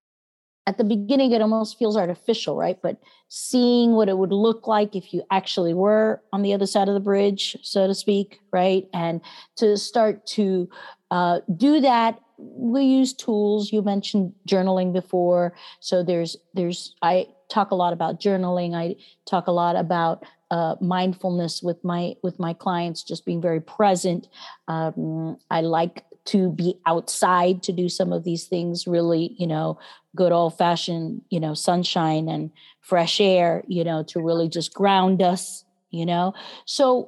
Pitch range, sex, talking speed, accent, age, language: 175-230 Hz, female, 165 wpm, American, 40-59, English